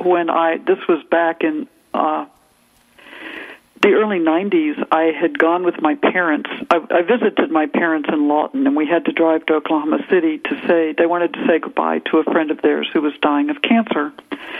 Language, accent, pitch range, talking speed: English, American, 155-240 Hz, 195 wpm